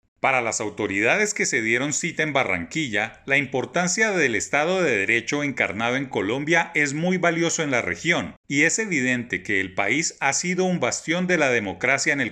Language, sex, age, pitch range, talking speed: Spanish, male, 40-59, 125-165 Hz, 190 wpm